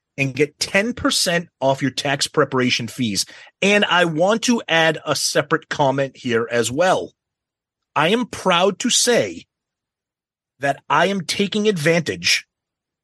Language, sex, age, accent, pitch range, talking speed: English, male, 30-49, American, 130-170 Hz, 135 wpm